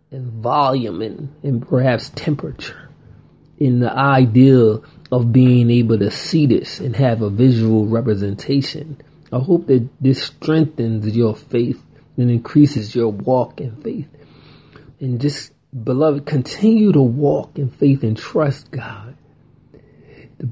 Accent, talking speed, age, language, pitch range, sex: American, 130 wpm, 40-59, English, 115-145 Hz, male